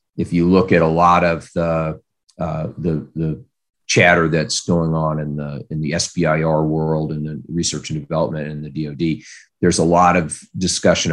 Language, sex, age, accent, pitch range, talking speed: English, male, 40-59, American, 75-90 Hz, 185 wpm